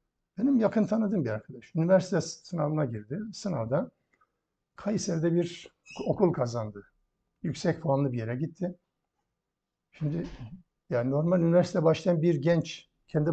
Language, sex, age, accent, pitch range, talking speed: Turkish, male, 60-79, native, 140-180 Hz, 115 wpm